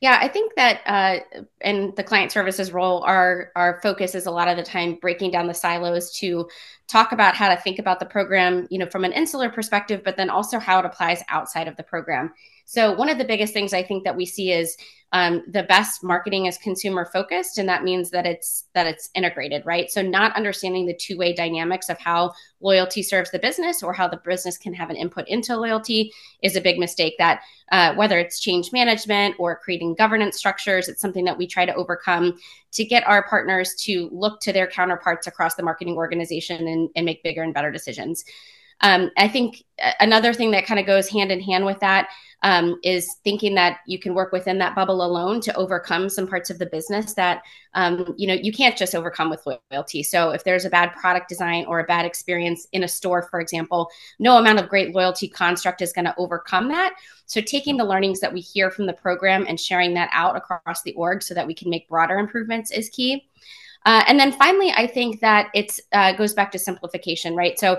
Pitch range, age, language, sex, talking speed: 175-205 Hz, 20-39, English, female, 220 wpm